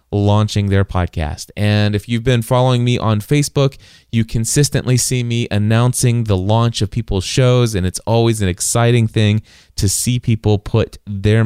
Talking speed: 170 wpm